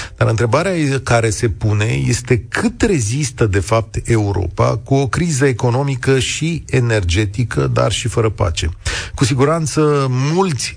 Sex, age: male, 40-59